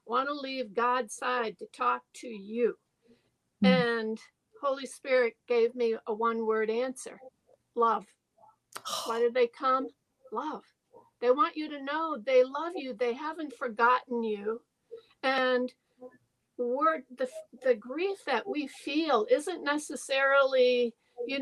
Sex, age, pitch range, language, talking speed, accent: female, 60-79, 235-290 Hz, English, 130 wpm, American